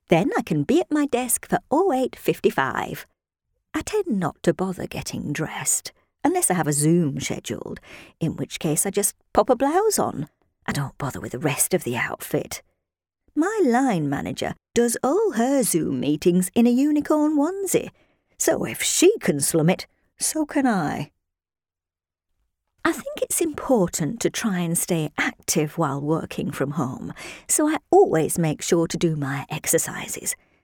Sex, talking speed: female, 165 wpm